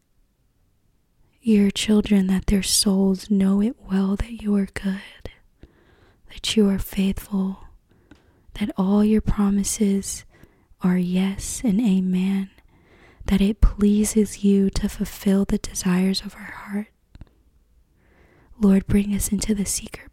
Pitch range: 195-210 Hz